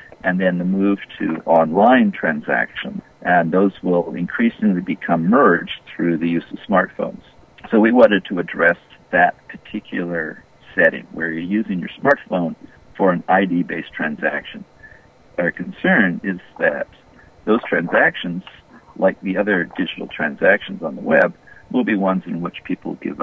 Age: 50-69